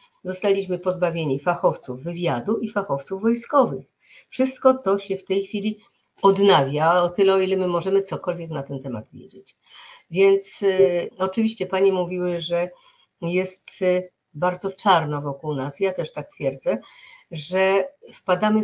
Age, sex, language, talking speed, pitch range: 50-69, female, Polish, 140 wpm, 170-210 Hz